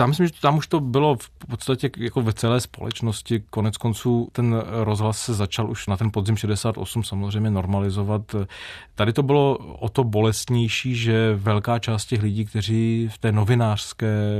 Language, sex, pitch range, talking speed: Czech, male, 100-115 Hz, 170 wpm